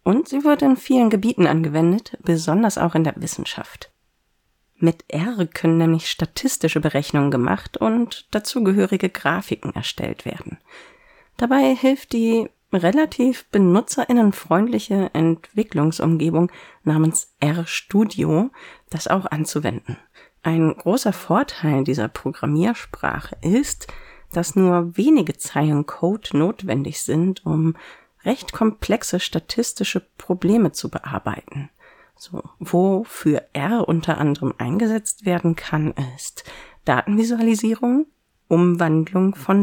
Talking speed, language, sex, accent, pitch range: 100 wpm, German, female, German, 160-225 Hz